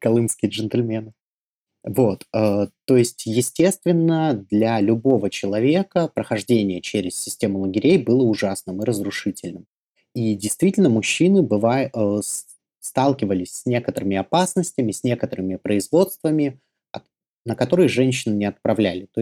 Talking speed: 110 wpm